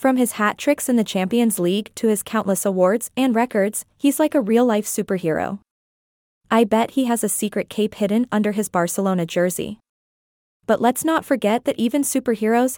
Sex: female